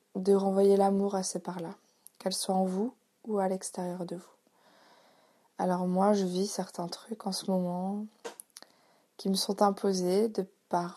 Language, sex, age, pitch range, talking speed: French, female, 20-39, 185-210 Hz, 165 wpm